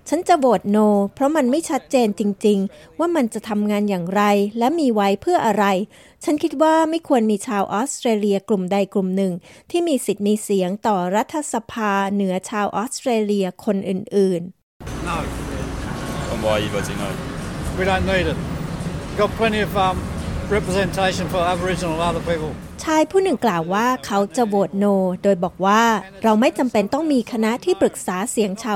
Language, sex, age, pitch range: Thai, female, 20-39, 195-255 Hz